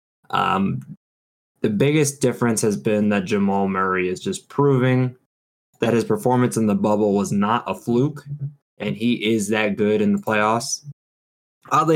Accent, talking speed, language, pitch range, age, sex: American, 155 wpm, English, 100-130 Hz, 20-39, male